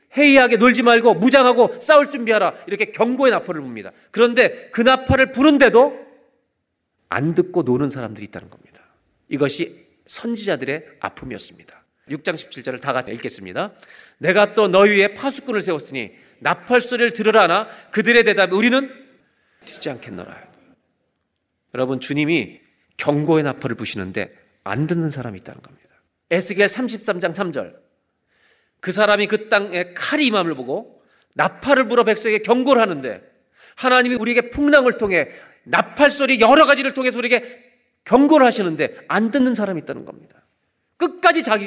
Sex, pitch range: male, 155-245 Hz